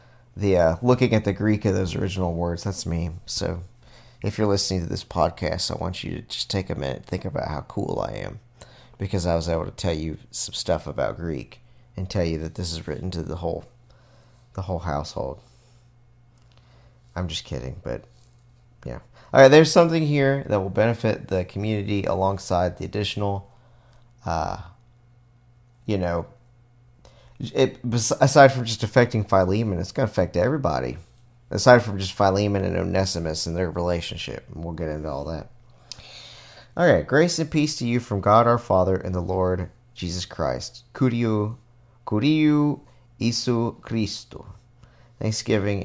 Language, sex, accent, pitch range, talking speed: English, male, American, 90-120 Hz, 160 wpm